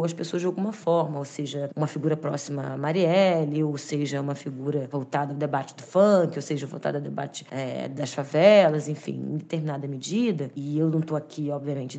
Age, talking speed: 20-39, 190 wpm